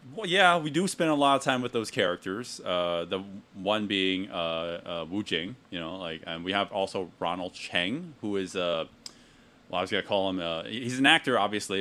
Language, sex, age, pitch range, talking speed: English, male, 30-49, 95-115 Hz, 225 wpm